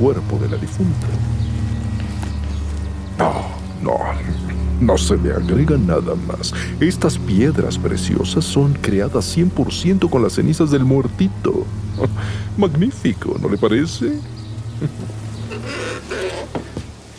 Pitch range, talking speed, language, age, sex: 100-140 Hz, 100 wpm, Spanish, 60-79, male